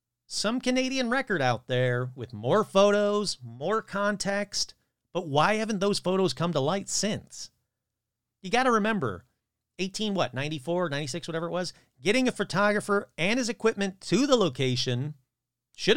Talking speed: 150 wpm